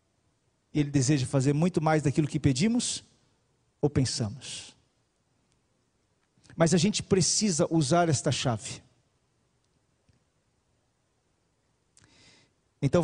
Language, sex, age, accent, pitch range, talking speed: Portuguese, male, 40-59, Brazilian, 130-195 Hz, 85 wpm